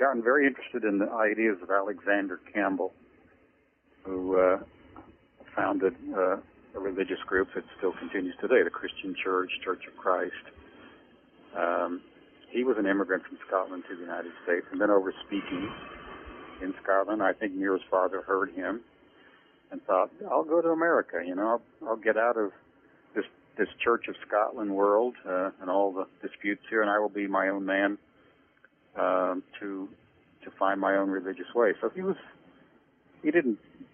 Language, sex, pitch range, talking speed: English, male, 95-105 Hz, 170 wpm